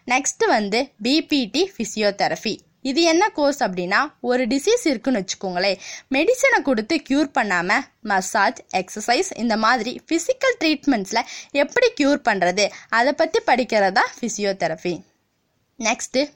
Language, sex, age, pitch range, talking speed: Tamil, female, 20-39, 205-305 Hz, 110 wpm